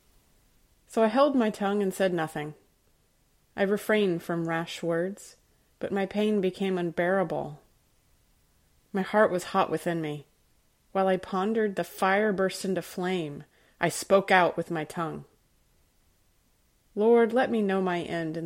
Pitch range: 165-205 Hz